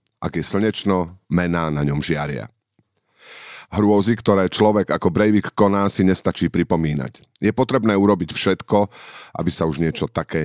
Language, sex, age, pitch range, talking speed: Slovak, male, 40-59, 85-110 Hz, 145 wpm